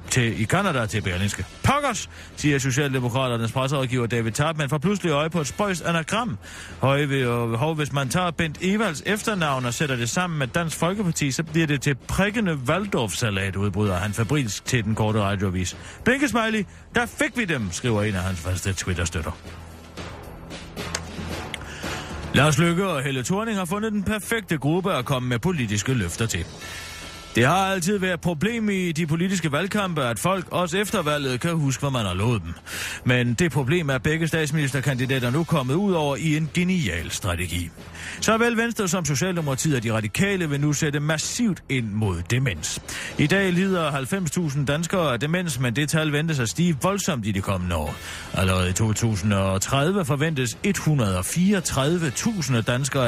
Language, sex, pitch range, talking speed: Danish, male, 110-175 Hz, 165 wpm